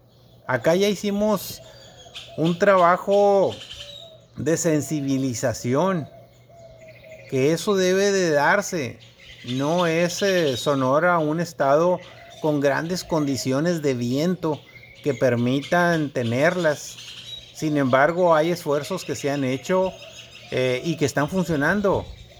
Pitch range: 130-175 Hz